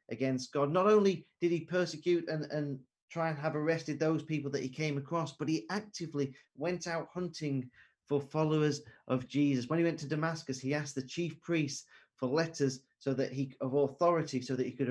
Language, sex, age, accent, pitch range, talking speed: English, male, 40-59, British, 130-155 Hz, 200 wpm